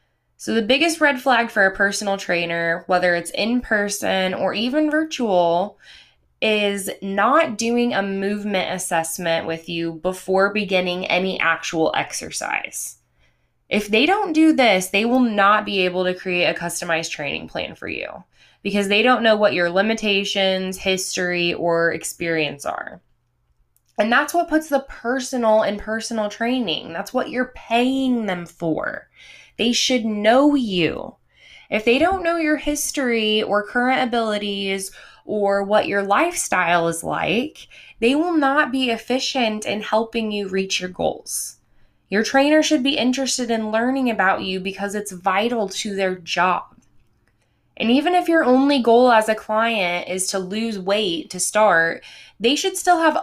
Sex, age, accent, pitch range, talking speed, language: female, 20-39, American, 185-245 Hz, 155 wpm, English